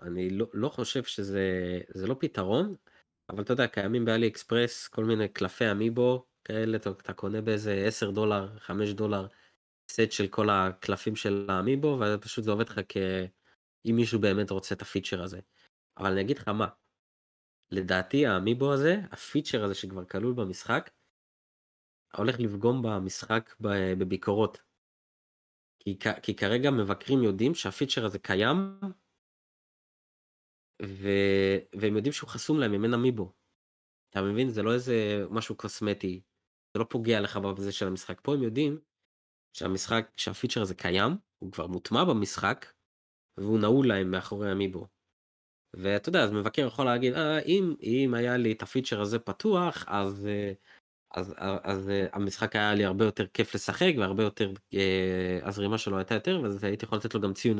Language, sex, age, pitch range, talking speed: Hebrew, male, 20-39, 95-115 Hz, 150 wpm